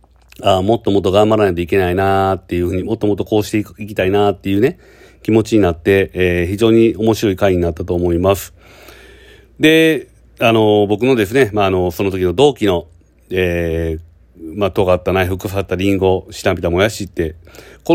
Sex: male